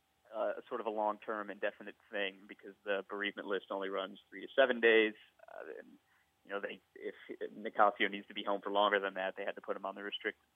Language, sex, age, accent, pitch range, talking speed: English, male, 30-49, American, 100-120 Hz, 235 wpm